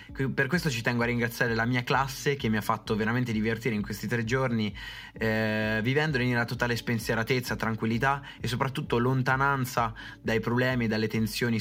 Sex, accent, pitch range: male, native, 105-125 Hz